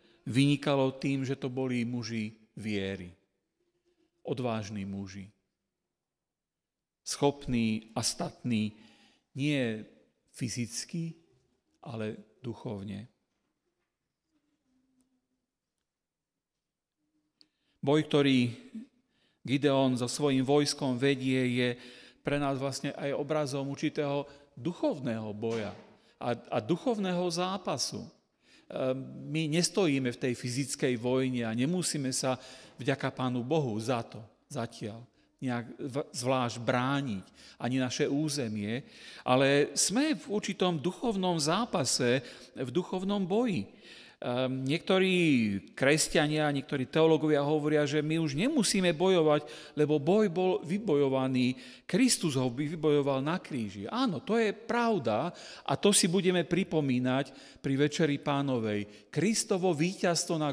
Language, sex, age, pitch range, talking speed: Slovak, male, 40-59, 125-175 Hz, 100 wpm